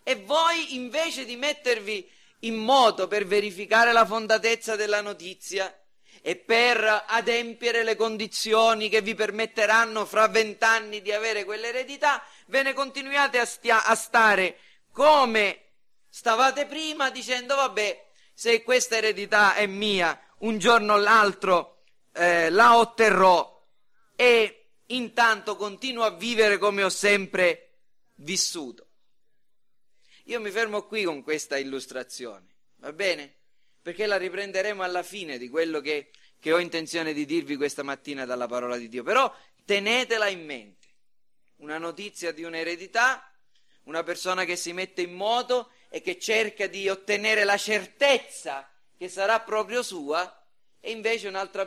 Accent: native